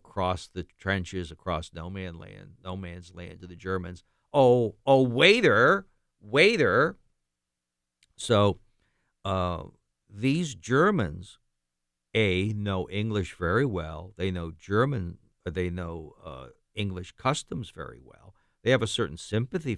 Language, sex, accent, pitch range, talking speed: English, male, American, 85-115 Hz, 125 wpm